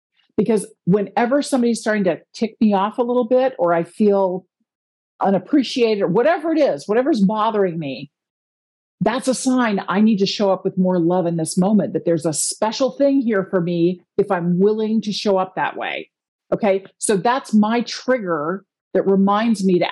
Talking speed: 185 wpm